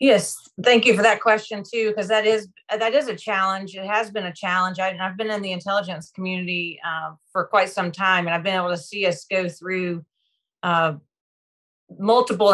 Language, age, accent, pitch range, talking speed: English, 30-49, American, 165-195 Hz, 195 wpm